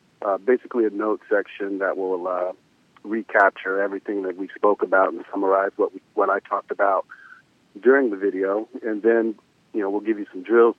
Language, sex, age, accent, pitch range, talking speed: English, male, 40-59, American, 105-125 Hz, 190 wpm